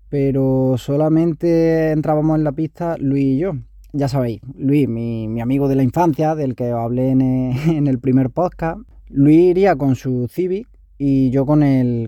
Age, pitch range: 20-39, 135-165 Hz